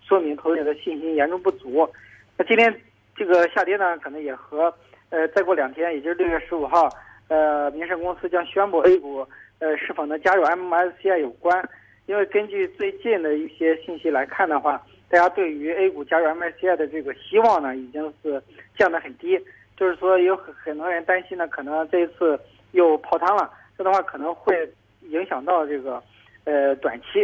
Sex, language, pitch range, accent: male, Chinese, 150-185 Hz, native